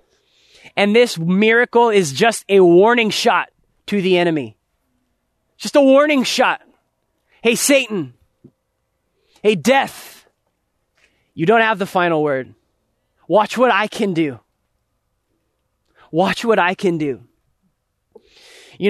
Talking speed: 115 wpm